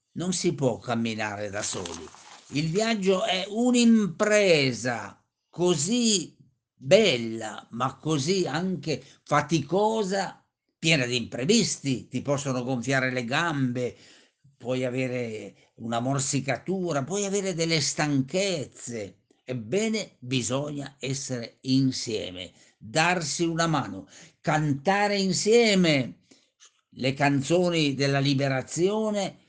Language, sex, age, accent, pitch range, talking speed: Italian, male, 50-69, native, 130-185 Hz, 90 wpm